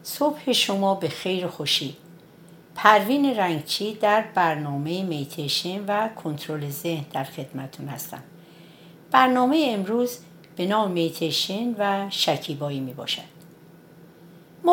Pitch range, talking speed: 150-195 Hz, 100 wpm